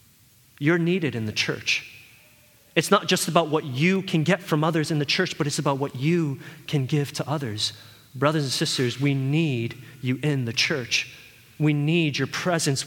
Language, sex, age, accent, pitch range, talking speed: English, male, 30-49, American, 140-180 Hz, 185 wpm